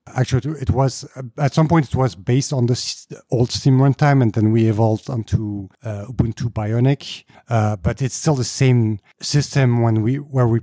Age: 50-69